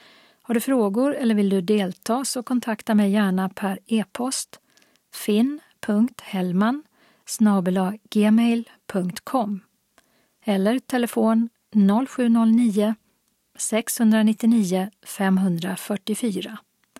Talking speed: 65 wpm